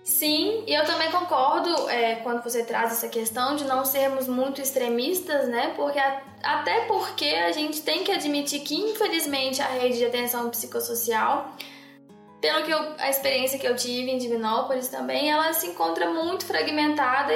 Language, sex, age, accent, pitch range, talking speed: Portuguese, female, 10-29, Brazilian, 245-305 Hz, 170 wpm